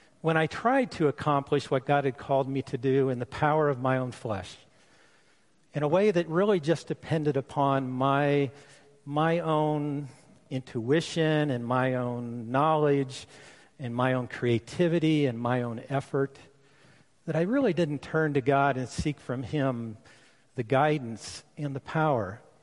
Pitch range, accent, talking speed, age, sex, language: 125-150 Hz, American, 155 wpm, 50-69, male, English